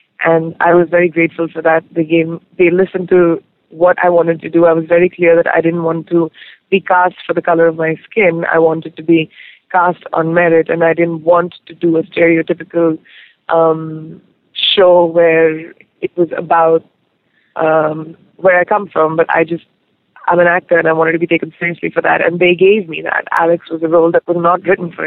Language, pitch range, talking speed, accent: English, 165-180 Hz, 215 wpm, Indian